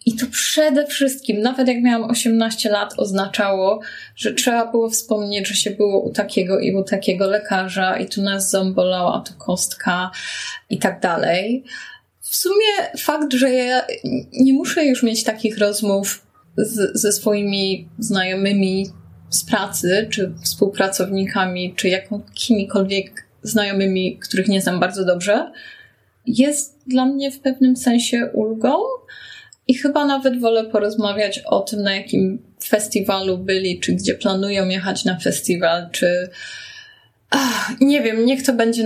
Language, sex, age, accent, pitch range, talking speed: Polish, female, 20-39, native, 195-250 Hz, 135 wpm